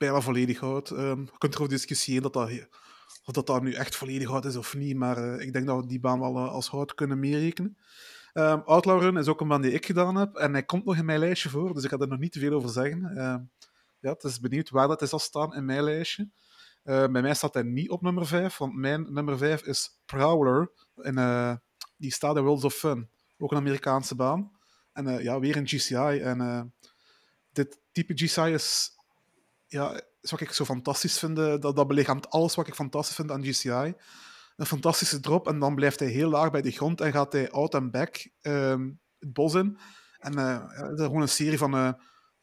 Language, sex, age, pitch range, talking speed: Dutch, male, 30-49, 135-155 Hz, 230 wpm